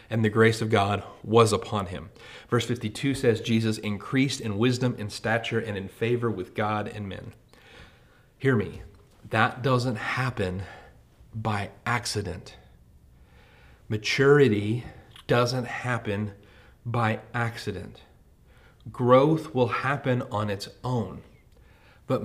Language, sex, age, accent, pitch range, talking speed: English, male, 30-49, American, 100-120 Hz, 115 wpm